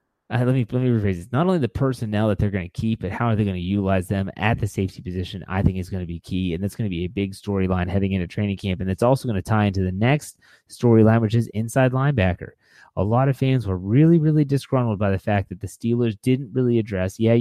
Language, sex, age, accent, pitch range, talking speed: English, male, 30-49, American, 95-125 Hz, 270 wpm